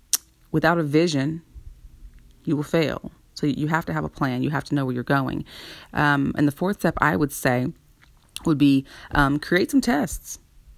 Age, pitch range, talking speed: 30-49, 135-170 Hz, 190 wpm